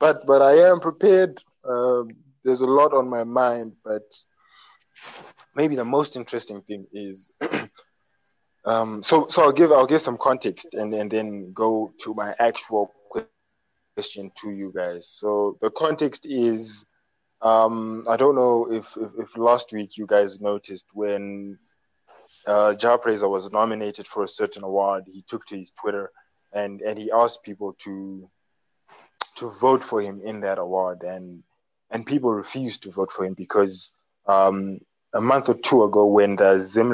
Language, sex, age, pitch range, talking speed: English, male, 20-39, 95-115 Hz, 160 wpm